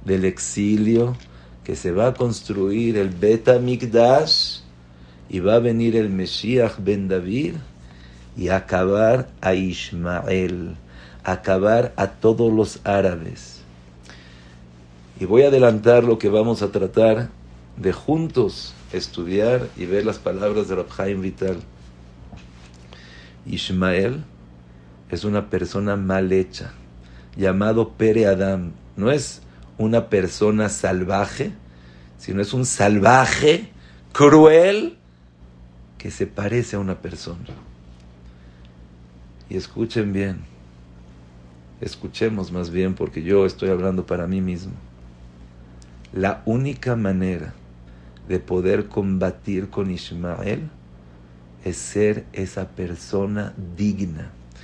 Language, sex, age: English, male, 50-69